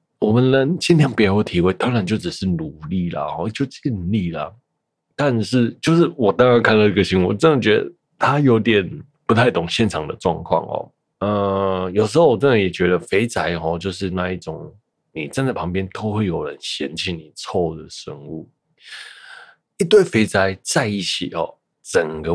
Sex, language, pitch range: male, Chinese, 90-115 Hz